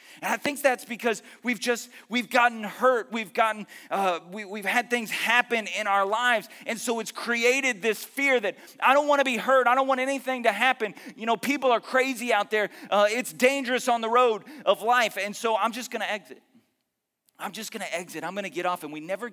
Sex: male